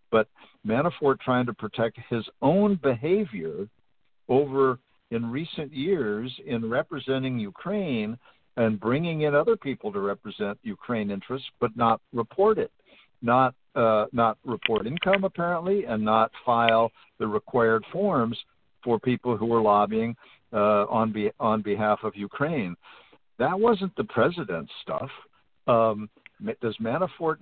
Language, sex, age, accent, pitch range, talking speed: English, male, 60-79, American, 115-165 Hz, 130 wpm